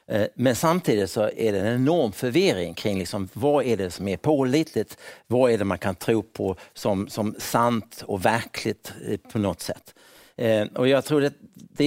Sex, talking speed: male, 180 wpm